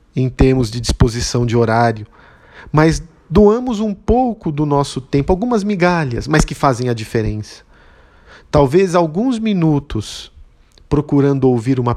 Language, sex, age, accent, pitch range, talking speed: Portuguese, male, 50-69, Brazilian, 115-145 Hz, 130 wpm